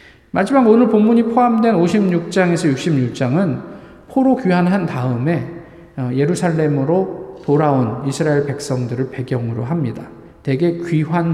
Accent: native